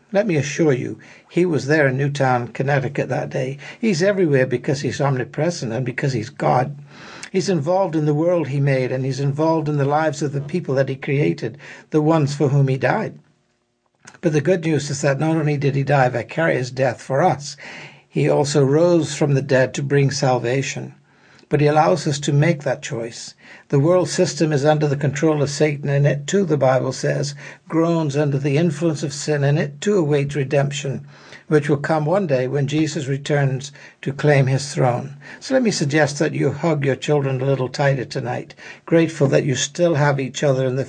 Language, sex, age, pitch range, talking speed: English, male, 60-79, 135-155 Hz, 205 wpm